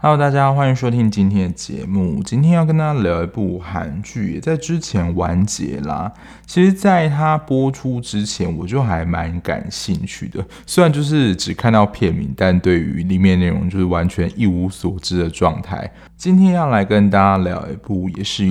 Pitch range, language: 90-125 Hz, Chinese